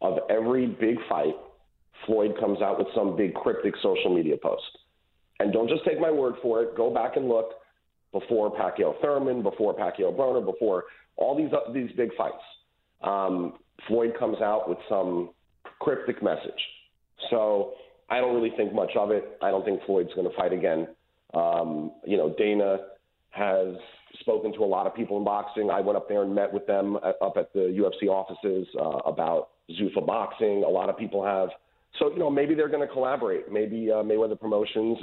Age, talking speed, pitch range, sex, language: 40-59, 190 wpm, 100-160 Hz, male, English